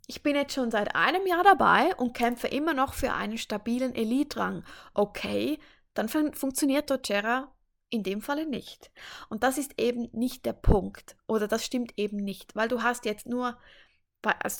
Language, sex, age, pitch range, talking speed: German, female, 20-39, 220-265 Hz, 175 wpm